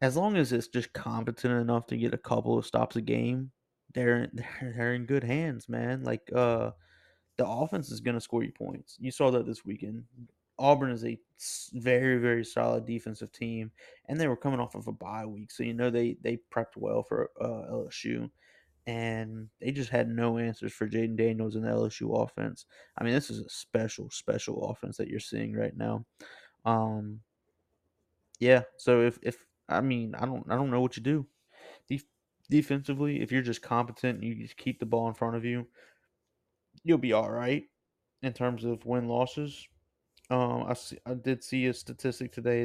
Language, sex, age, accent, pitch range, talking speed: English, male, 20-39, American, 115-125 Hz, 190 wpm